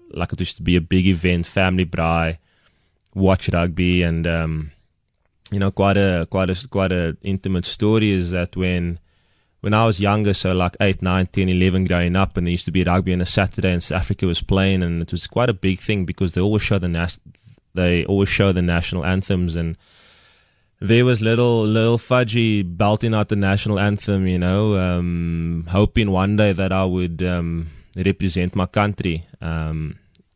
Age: 20-39